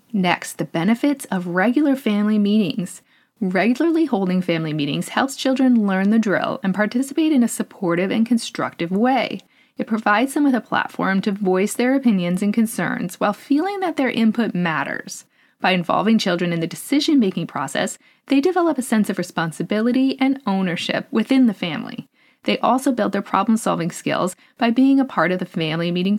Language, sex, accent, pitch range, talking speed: English, female, American, 190-255 Hz, 170 wpm